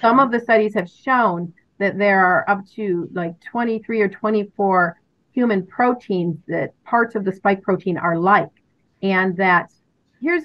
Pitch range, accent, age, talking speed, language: 170-220 Hz, American, 40-59, 160 wpm, English